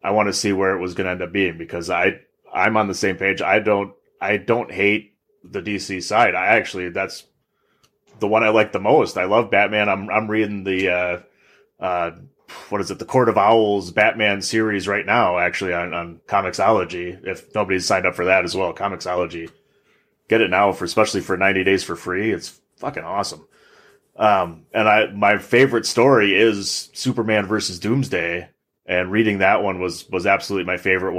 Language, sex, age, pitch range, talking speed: English, male, 30-49, 90-105 Hz, 195 wpm